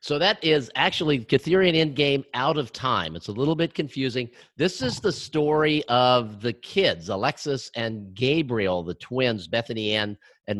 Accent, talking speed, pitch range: American, 165 wpm, 115-145 Hz